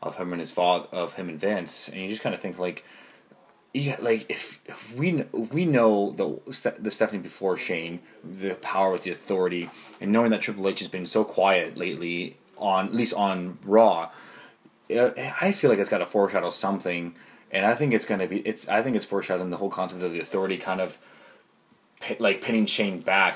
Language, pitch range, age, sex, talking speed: English, 90-105 Hz, 20-39, male, 210 wpm